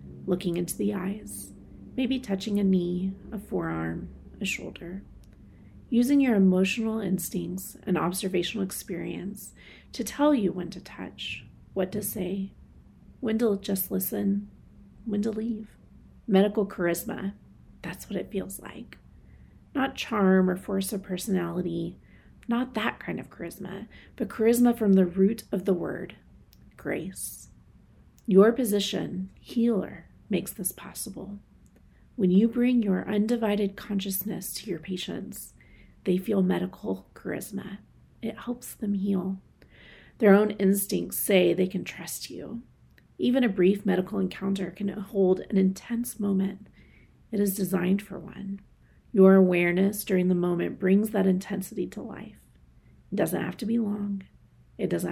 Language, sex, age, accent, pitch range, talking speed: English, female, 30-49, American, 185-210 Hz, 135 wpm